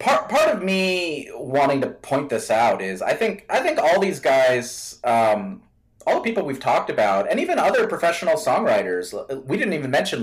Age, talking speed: 30-49, 195 wpm